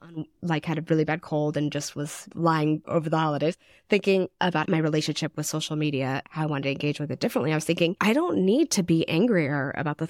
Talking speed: 230 wpm